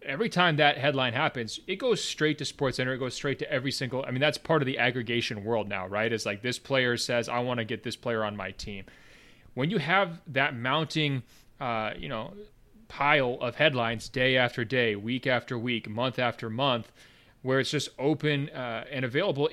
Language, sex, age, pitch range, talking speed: English, male, 30-49, 120-145 Hz, 205 wpm